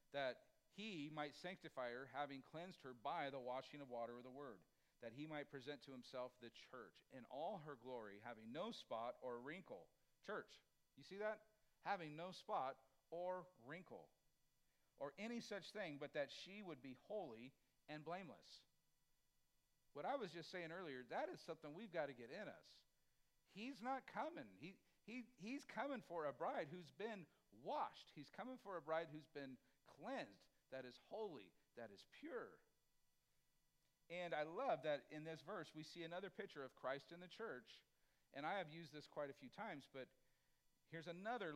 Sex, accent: male, American